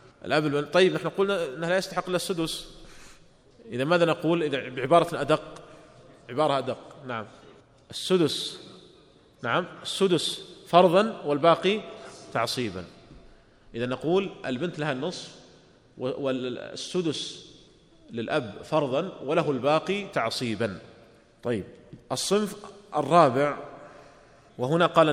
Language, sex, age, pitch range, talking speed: Arabic, male, 30-49, 125-160 Hz, 90 wpm